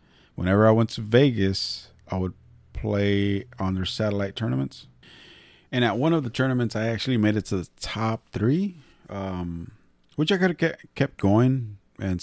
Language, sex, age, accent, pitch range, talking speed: English, male, 30-49, American, 85-110 Hz, 165 wpm